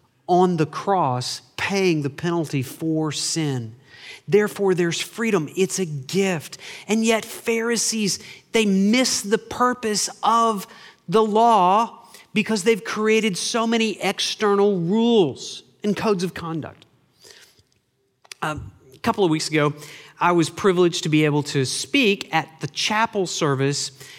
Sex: male